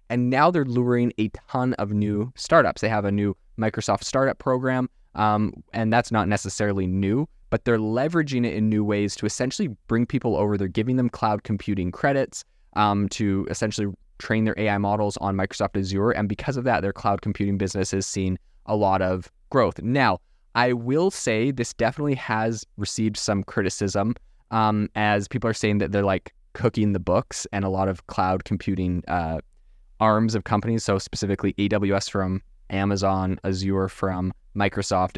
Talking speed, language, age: 175 wpm, English, 20-39